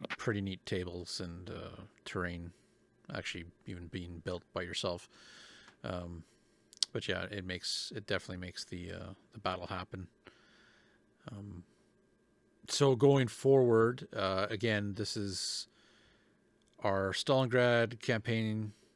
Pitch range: 95-115 Hz